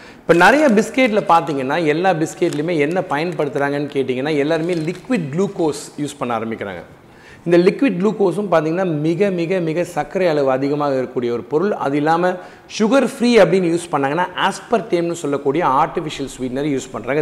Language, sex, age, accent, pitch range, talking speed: Tamil, male, 40-59, native, 140-185 Hz, 145 wpm